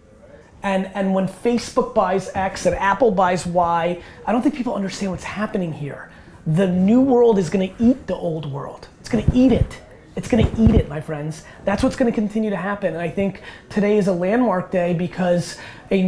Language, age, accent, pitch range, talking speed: English, 20-39, American, 165-205 Hz, 215 wpm